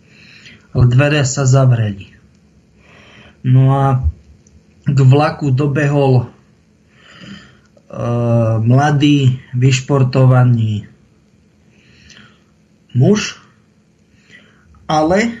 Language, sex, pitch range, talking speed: Czech, male, 125-150 Hz, 50 wpm